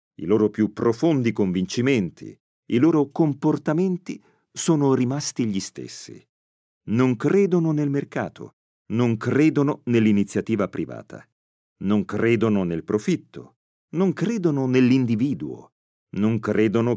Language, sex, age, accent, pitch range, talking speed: Italian, male, 40-59, native, 100-145 Hz, 105 wpm